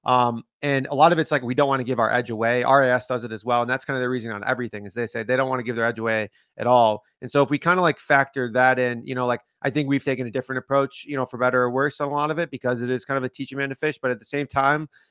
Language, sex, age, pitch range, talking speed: English, male, 30-49, 125-150 Hz, 345 wpm